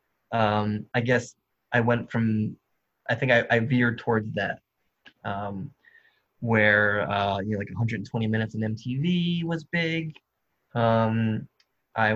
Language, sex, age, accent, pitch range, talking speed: English, male, 20-39, American, 110-140 Hz, 135 wpm